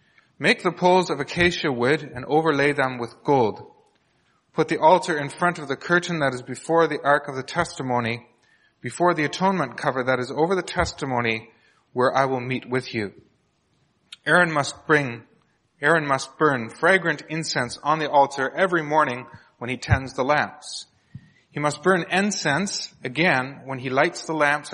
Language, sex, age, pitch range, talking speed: English, male, 30-49, 130-165 Hz, 170 wpm